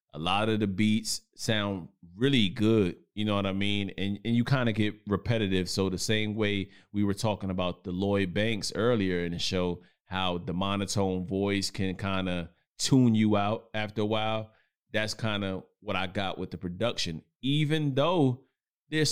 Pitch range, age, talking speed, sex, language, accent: 95-115 Hz, 30-49, 190 wpm, male, English, American